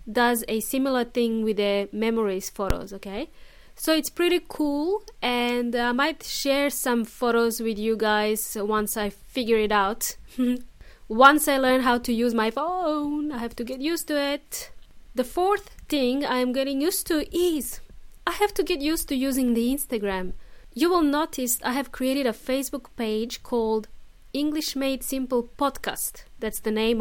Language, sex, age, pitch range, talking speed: English, female, 20-39, 225-290 Hz, 170 wpm